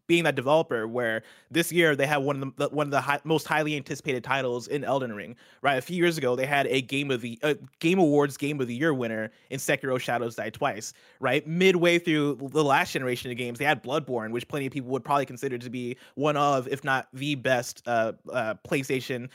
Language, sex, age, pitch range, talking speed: English, male, 20-39, 130-160 Hz, 230 wpm